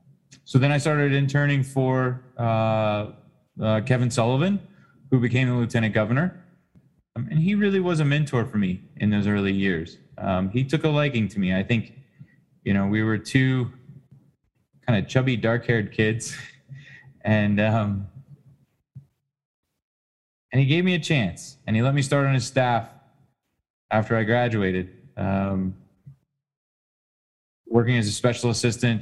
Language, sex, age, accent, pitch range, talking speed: English, male, 20-39, American, 110-140 Hz, 150 wpm